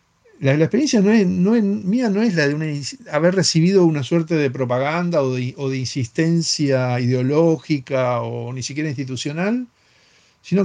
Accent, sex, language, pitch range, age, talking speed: Argentinian, male, Spanish, 135-195 Hz, 50-69, 135 wpm